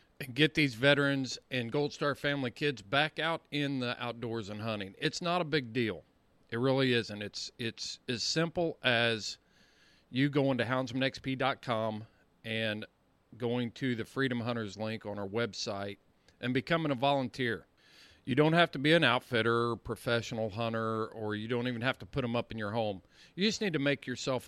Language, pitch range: English, 115-145 Hz